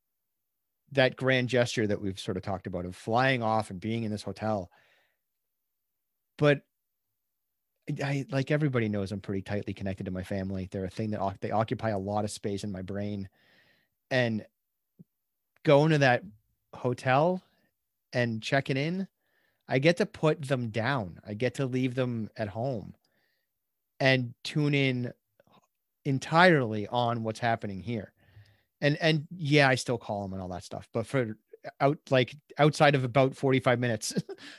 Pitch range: 105-135 Hz